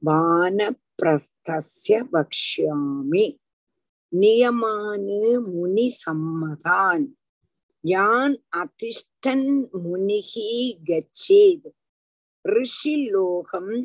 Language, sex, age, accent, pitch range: Tamil, female, 50-69, native, 180-285 Hz